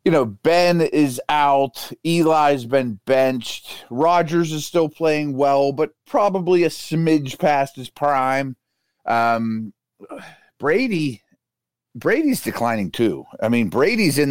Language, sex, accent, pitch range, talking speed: English, male, American, 120-150 Hz, 120 wpm